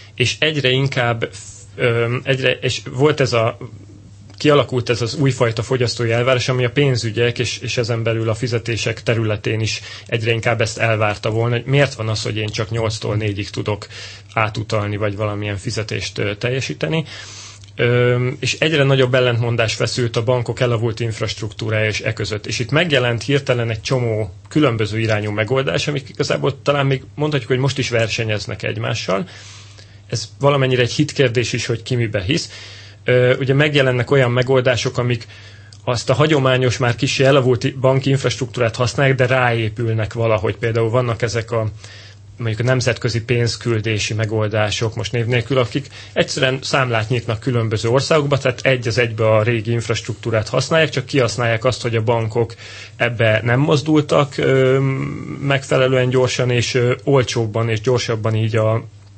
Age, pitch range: 30-49, 110-130 Hz